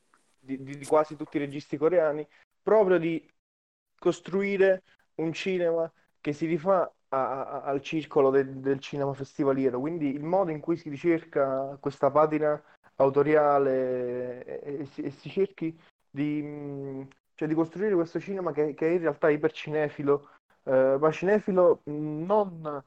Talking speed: 145 wpm